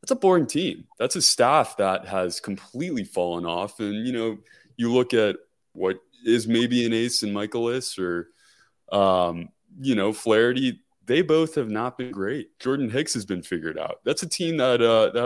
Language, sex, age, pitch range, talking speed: English, male, 20-39, 100-130 Hz, 190 wpm